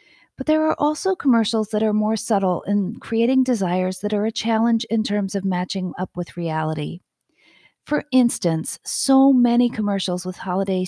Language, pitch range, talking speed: English, 185-250 Hz, 165 wpm